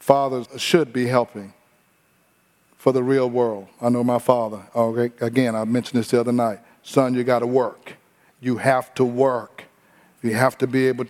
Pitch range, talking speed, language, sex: 130-165 Hz, 175 wpm, English, male